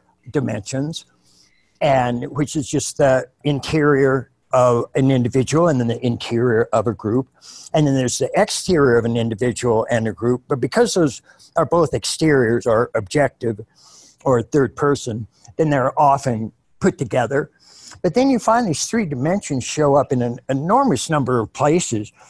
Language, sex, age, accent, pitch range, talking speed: English, male, 60-79, American, 120-155 Hz, 160 wpm